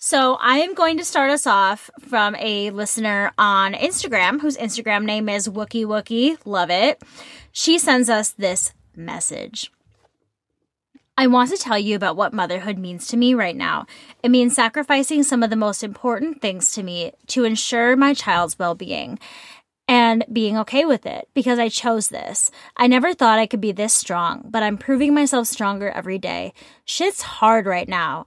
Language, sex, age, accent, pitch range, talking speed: English, female, 10-29, American, 205-270 Hz, 175 wpm